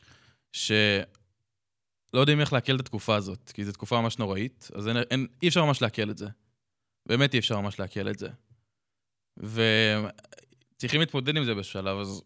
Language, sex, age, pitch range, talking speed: Hebrew, male, 20-39, 105-125 Hz, 165 wpm